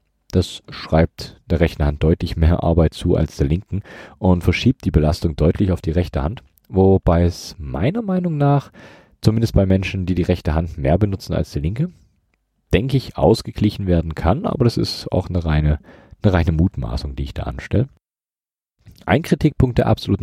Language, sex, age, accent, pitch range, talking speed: German, male, 40-59, German, 75-100 Hz, 180 wpm